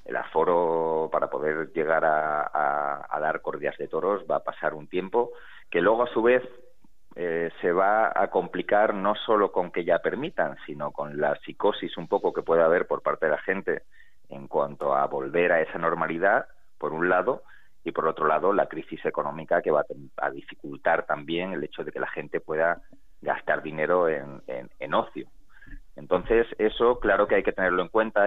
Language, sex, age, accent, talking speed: Spanish, male, 30-49, Spanish, 195 wpm